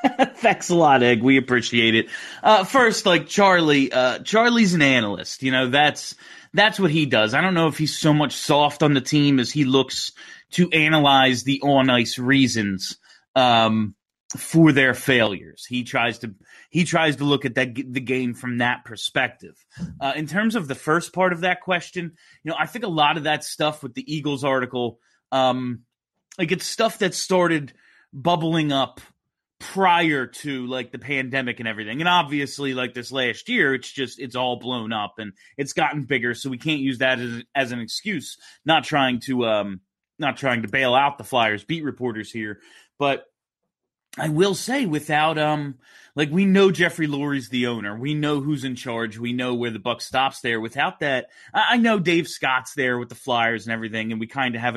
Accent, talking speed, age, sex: American, 195 wpm, 30-49, male